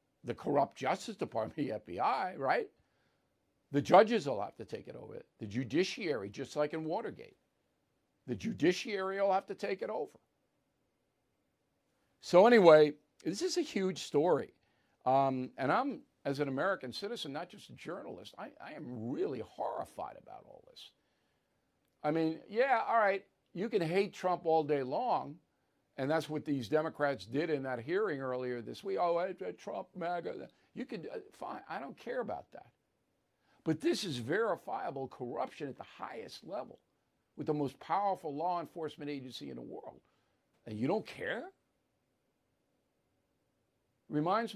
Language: English